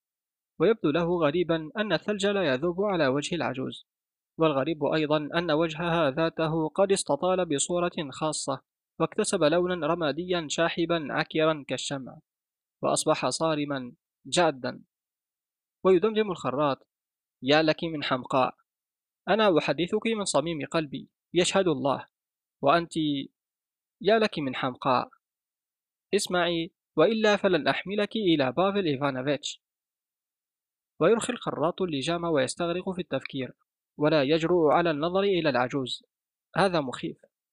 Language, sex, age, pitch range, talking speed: Arabic, male, 20-39, 150-180 Hz, 105 wpm